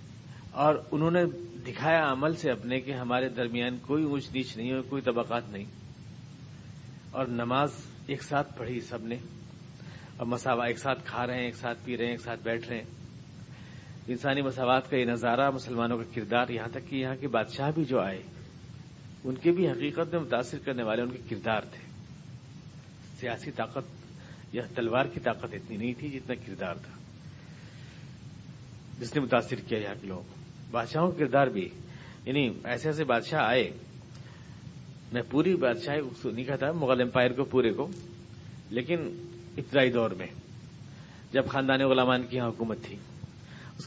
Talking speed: 160 wpm